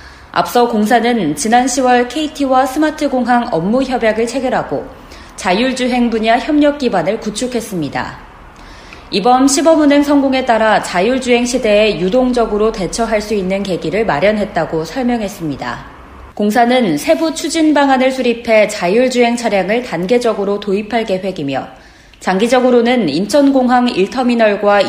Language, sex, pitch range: Korean, female, 195-255 Hz